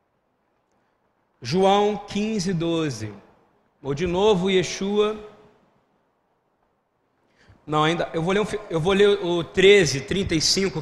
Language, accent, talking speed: Portuguese, Brazilian, 105 wpm